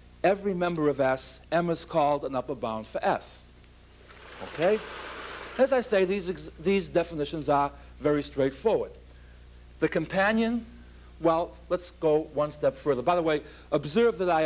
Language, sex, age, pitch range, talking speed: English, male, 60-79, 130-170 Hz, 150 wpm